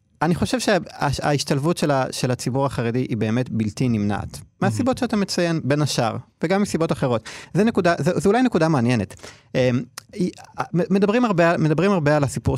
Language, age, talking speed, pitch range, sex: Hebrew, 30-49, 140 wpm, 110-160 Hz, male